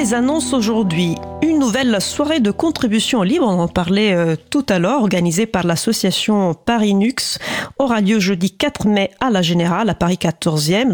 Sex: female